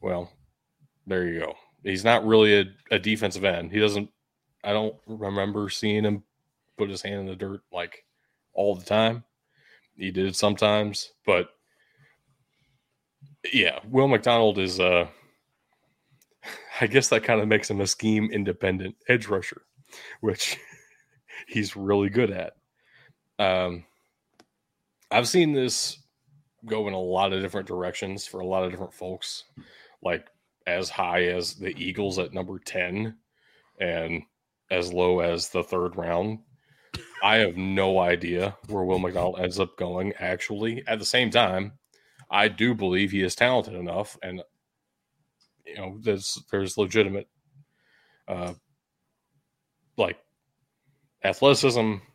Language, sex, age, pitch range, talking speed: English, male, 20-39, 95-115 Hz, 140 wpm